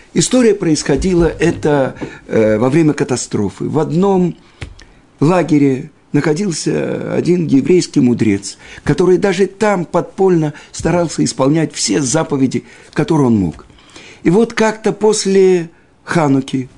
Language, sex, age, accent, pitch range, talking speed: Russian, male, 50-69, native, 140-180 Hz, 105 wpm